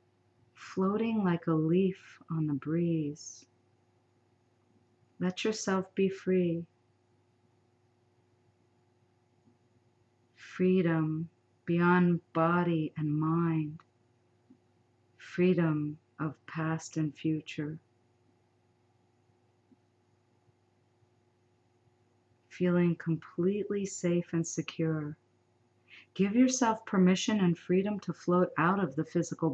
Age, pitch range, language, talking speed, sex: 50-69, 120-170 Hz, English, 75 wpm, female